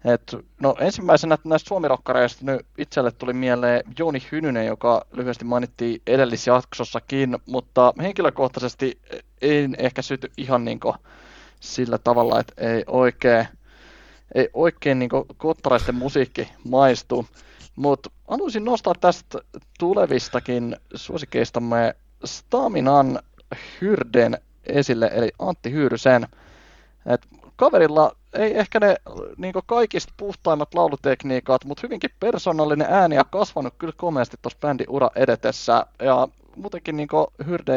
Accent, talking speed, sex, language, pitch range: native, 115 wpm, male, Finnish, 125-160 Hz